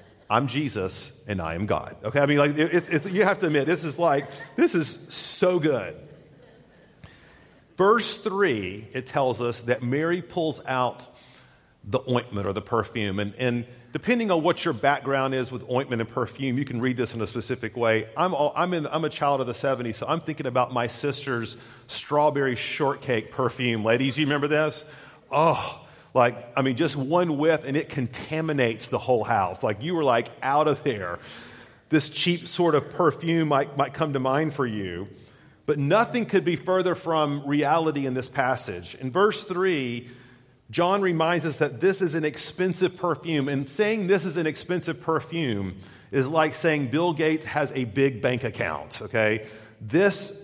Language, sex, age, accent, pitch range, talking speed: English, male, 40-59, American, 125-160 Hz, 180 wpm